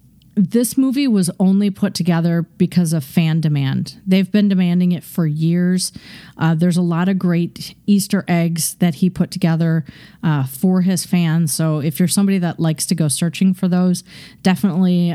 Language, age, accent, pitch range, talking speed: English, 40-59, American, 160-185 Hz, 175 wpm